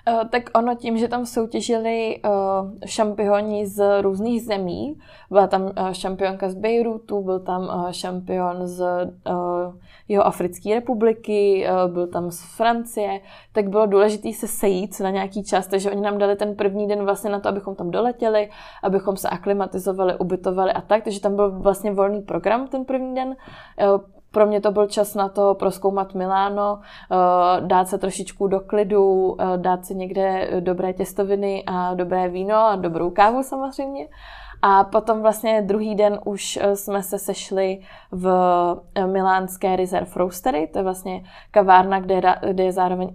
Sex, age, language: female, 20-39, Czech